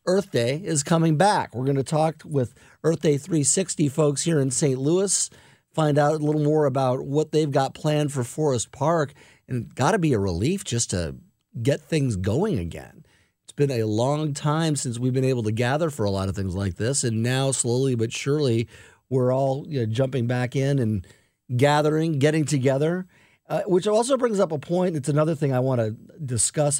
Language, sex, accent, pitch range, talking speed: English, male, American, 115-155 Hz, 205 wpm